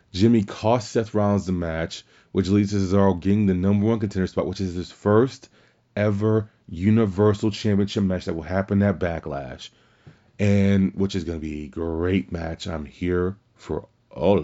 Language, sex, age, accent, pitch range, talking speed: English, male, 30-49, American, 90-110 Hz, 175 wpm